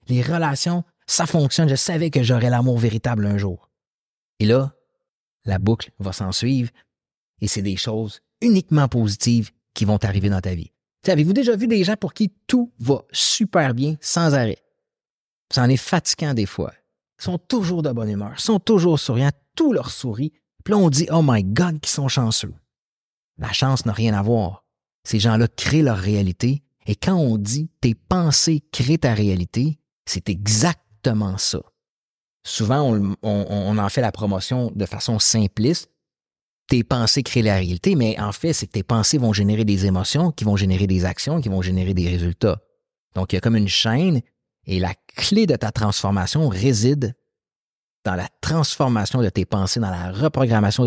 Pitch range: 105-150 Hz